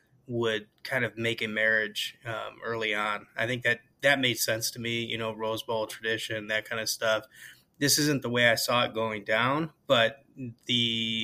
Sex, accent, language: male, American, English